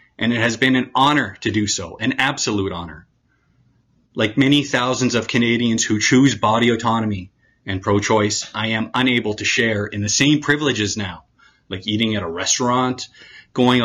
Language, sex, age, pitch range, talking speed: English, male, 30-49, 105-125 Hz, 170 wpm